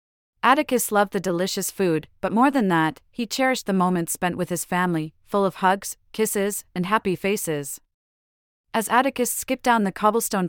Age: 40-59